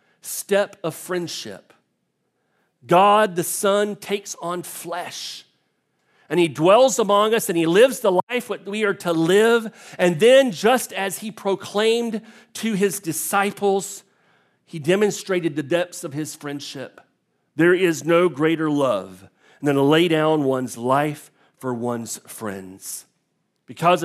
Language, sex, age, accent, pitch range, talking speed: English, male, 40-59, American, 145-195 Hz, 135 wpm